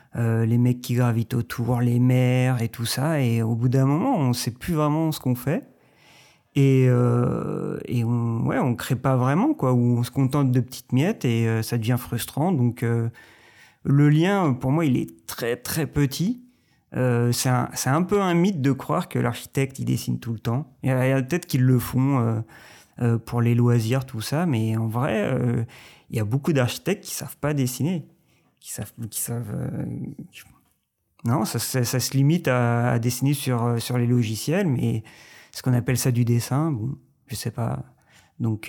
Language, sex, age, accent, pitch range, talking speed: French, male, 30-49, French, 120-135 Hz, 200 wpm